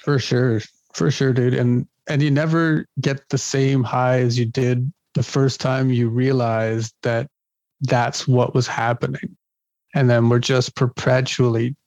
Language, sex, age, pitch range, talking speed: English, male, 40-59, 125-145 Hz, 155 wpm